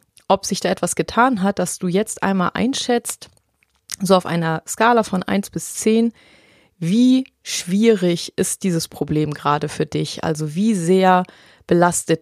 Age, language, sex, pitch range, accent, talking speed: 30-49, German, female, 165-205 Hz, German, 150 wpm